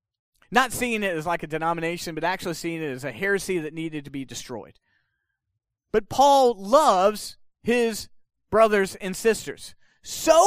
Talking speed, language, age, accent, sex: 155 wpm, English, 30-49, American, male